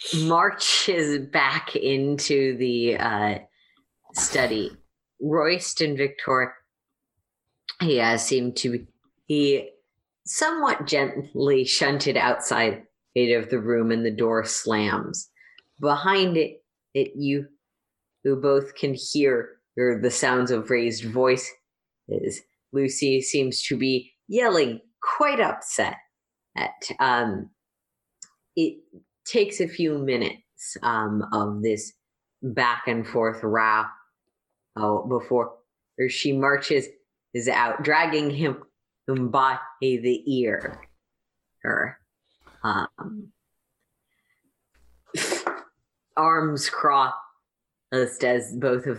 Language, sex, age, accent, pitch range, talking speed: English, female, 40-59, American, 120-150 Hz, 95 wpm